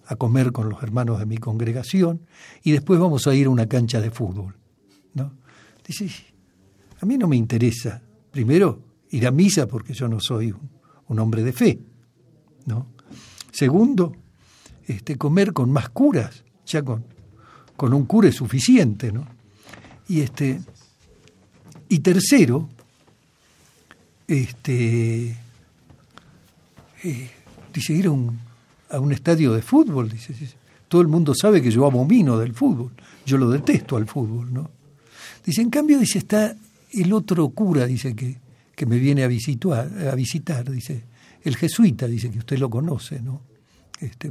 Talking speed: 150 wpm